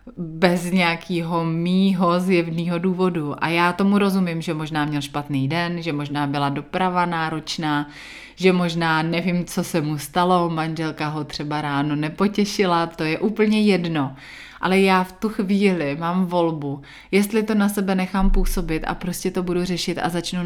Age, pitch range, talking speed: 30-49, 155-190 Hz, 160 wpm